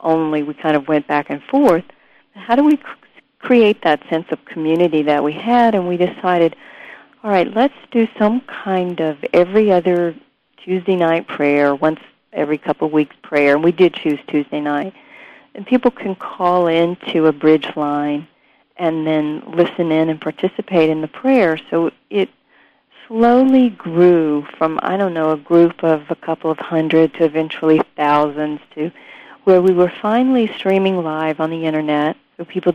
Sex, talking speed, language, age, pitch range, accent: female, 170 wpm, English, 50-69, 155-185 Hz, American